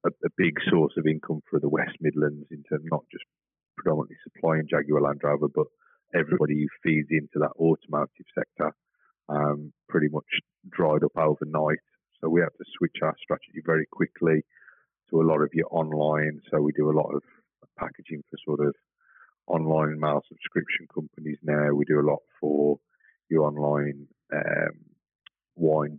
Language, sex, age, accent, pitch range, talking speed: English, male, 30-49, British, 75-80 Hz, 165 wpm